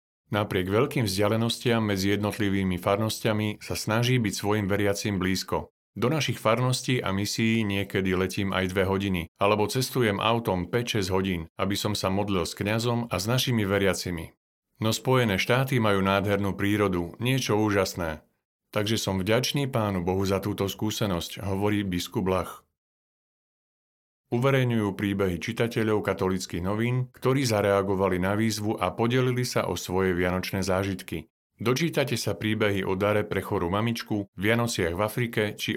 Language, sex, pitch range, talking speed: Slovak, male, 95-115 Hz, 140 wpm